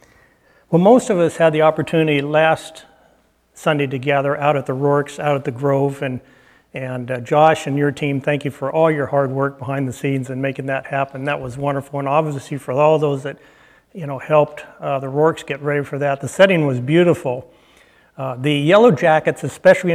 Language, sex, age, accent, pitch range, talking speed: English, male, 60-79, American, 140-165 Hz, 205 wpm